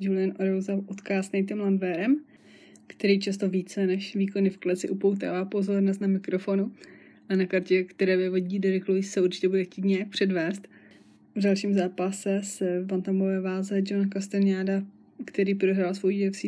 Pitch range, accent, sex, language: 185-200 Hz, native, female, Czech